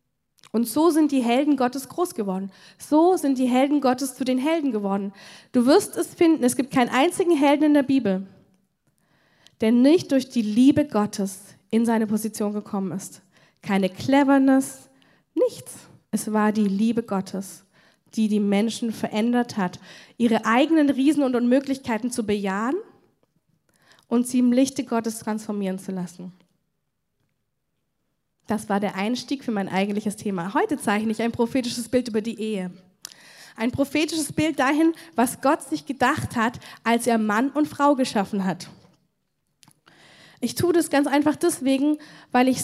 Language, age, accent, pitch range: German, 10-29, German, 215-285 Hz